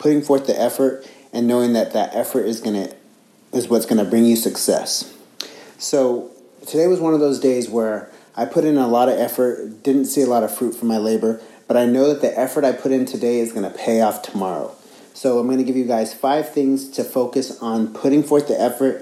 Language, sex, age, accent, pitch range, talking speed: English, male, 30-49, American, 115-135 Hz, 235 wpm